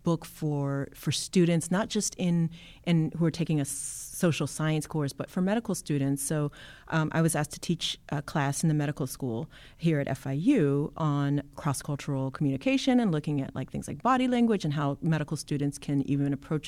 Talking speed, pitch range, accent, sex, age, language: 190 wpm, 145-185 Hz, American, female, 30-49, English